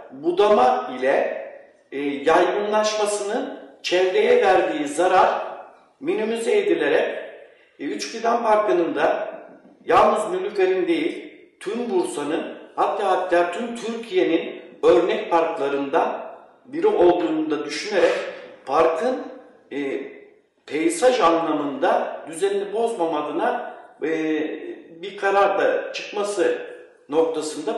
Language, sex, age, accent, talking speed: Turkish, male, 60-79, native, 85 wpm